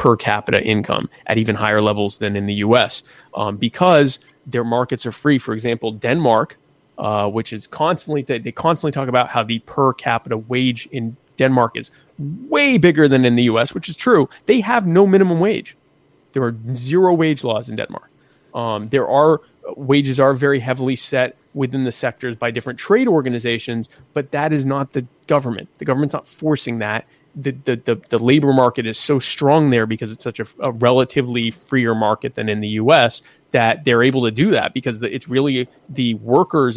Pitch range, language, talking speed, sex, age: 115-145 Hz, English, 190 wpm, male, 30-49